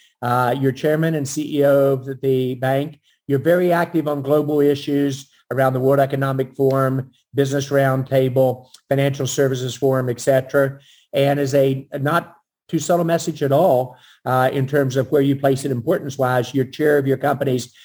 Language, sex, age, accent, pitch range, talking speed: English, male, 50-69, American, 135-165 Hz, 165 wpm